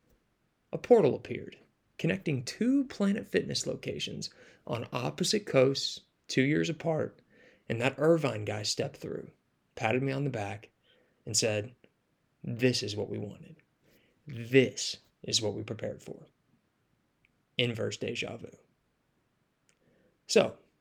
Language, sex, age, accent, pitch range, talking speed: English, male, 20-39, American, 110-145 Hz, 120 wpm